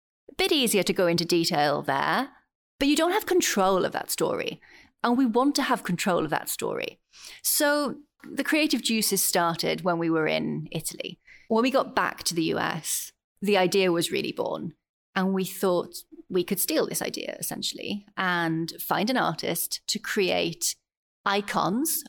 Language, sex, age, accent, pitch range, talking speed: English, female, 30-49, British, 175-265 Hz, 170 wpm